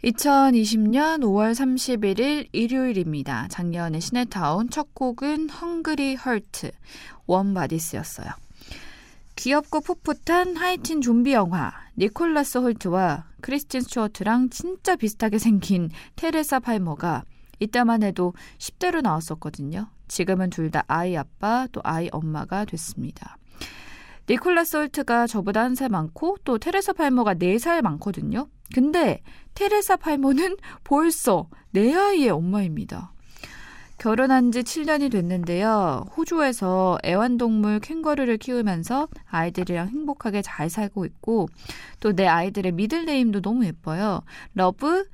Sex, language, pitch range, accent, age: female, Korean, 185-290 Hz, native, 20-39